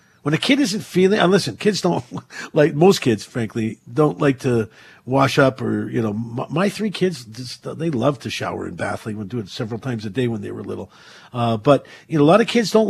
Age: 50-69